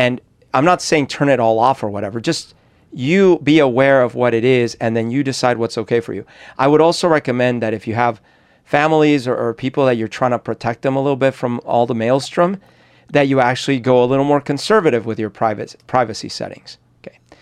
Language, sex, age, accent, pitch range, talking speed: English, male, 40-59, American, 115-140 Hz, 220 wpm